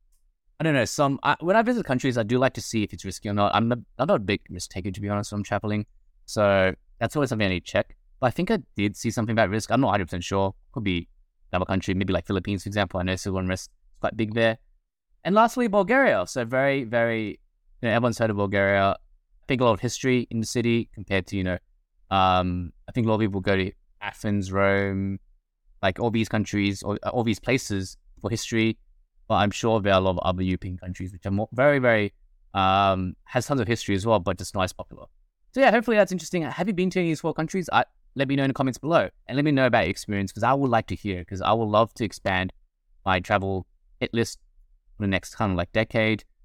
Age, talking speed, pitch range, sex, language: 20-39, 260 wpm, 95-125 Hz, male, English